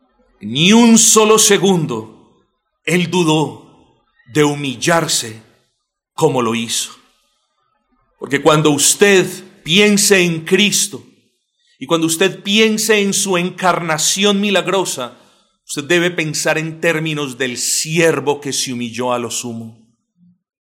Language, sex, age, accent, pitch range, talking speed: Spanish, male, 40-59, Colombian, 160-240 Hz, 110 wpm